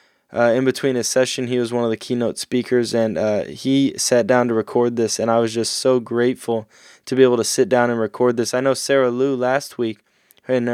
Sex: male